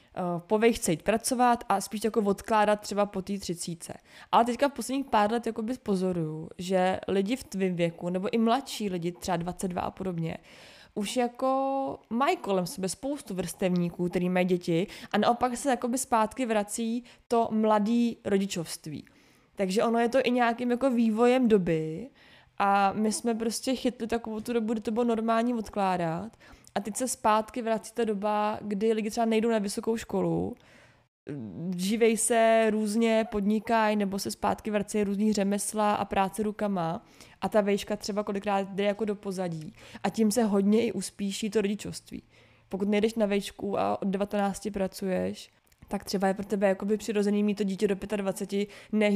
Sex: female